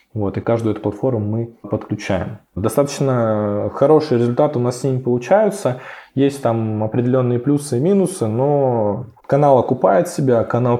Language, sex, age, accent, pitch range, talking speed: Russian, male, 20-39, native, 100-125 Hz, 145 wpm